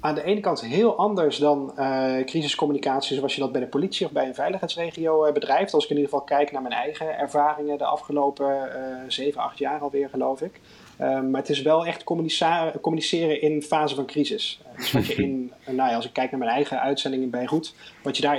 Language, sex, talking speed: Dutch, male, 230 wpm